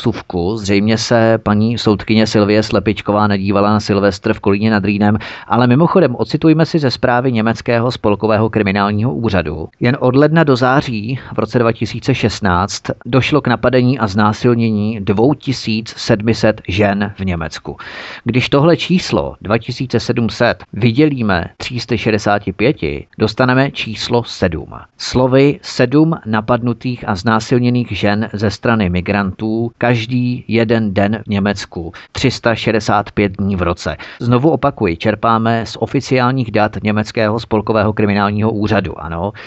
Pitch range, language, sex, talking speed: 105-125 Hz, Czech, male, 120 wpm